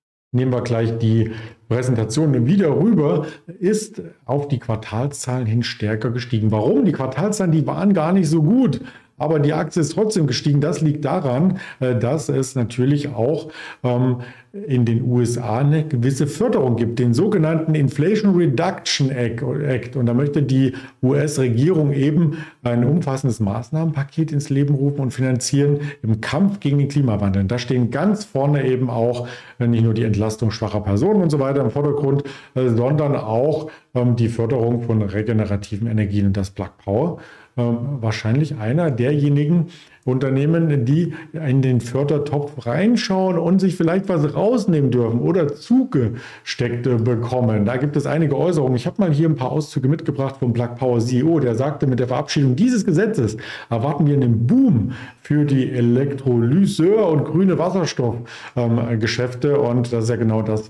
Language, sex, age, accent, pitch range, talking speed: German, male, 50-69, German, 115-150 Hz, 155 wpm